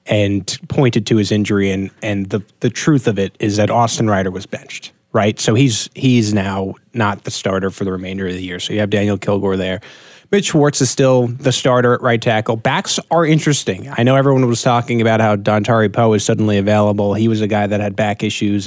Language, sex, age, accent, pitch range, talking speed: English, male, 20-39, American, 110-140 Hz, 225 wpm